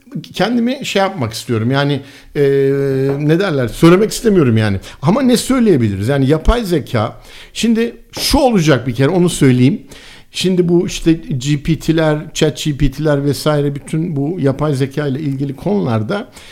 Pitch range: 130-195 Hz